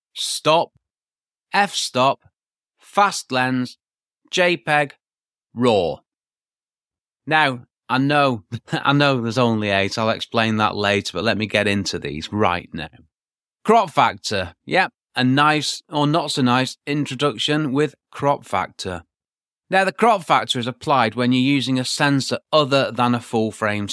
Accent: British